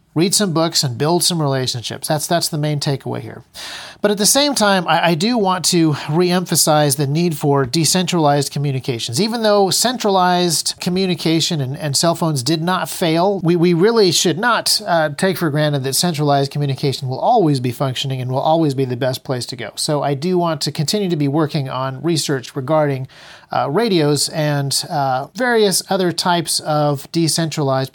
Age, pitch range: 40-59, 140-185 Hz